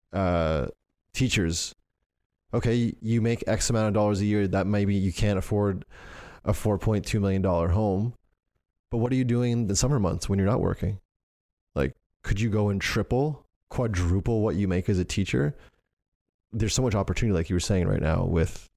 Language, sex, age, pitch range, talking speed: English, male, 20-39, 90-110 Hz, 190 wpm